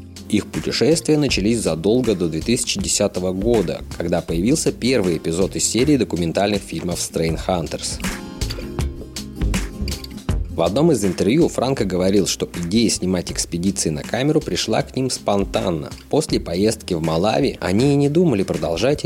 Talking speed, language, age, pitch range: 130 wpm, Russian, 20-39, 85-130 Hz